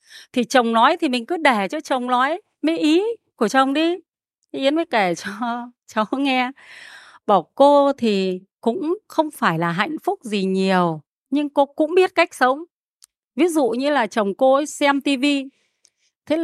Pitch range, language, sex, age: 210-320 Hz, Vietnamese, female, 30-49